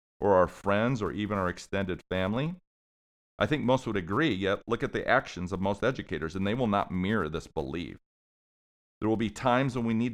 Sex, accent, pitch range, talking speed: male, American, 90-115 Hz, 205 wpm